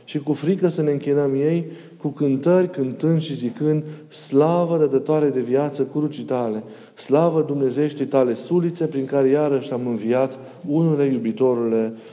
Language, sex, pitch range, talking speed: Romanian, male, 125-160 Hz, 145 wpm